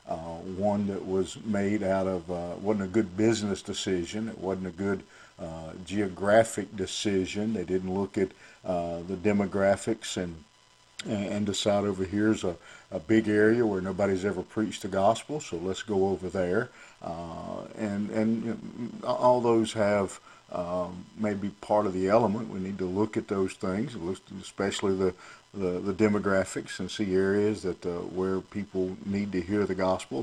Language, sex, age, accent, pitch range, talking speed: English, male, 50-69, American, 95-110 Hz, 170 wpm